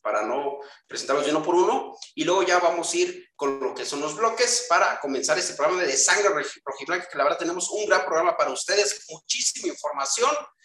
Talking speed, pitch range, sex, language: 210 wpm, 150-245 Hz, male, Spanish